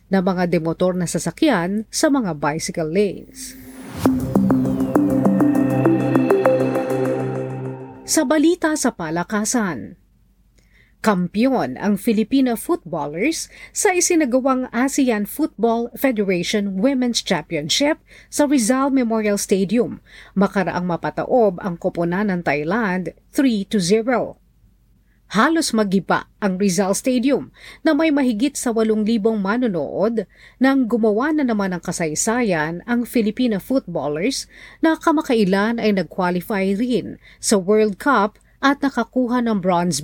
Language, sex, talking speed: Filipino, female, 100 wpm